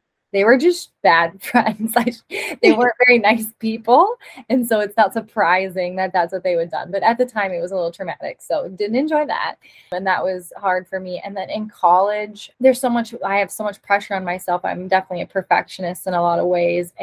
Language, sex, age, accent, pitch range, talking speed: English, female, 20-39, American, 175-205 Hz, 220 wpm